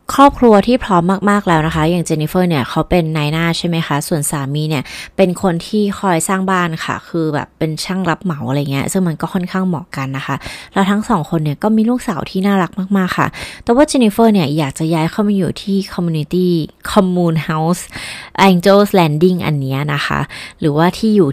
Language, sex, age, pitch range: Thai, female, 20-39, 155-205 Hz